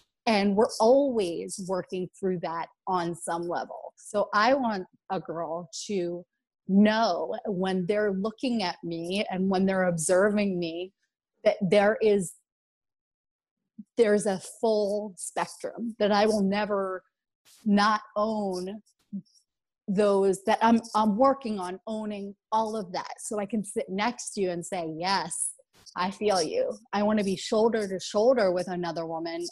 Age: 30-49